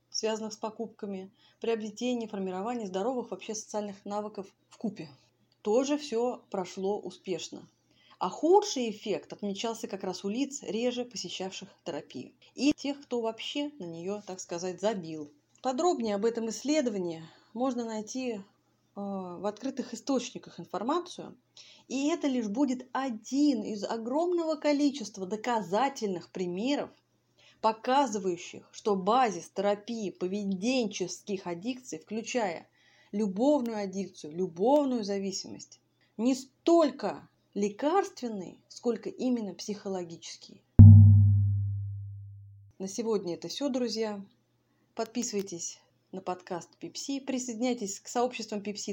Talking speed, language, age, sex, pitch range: 105 wpm, Russian, 30-49, female, 185-245 Hz